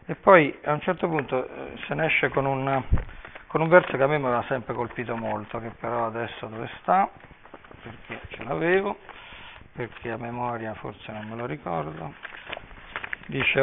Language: Italian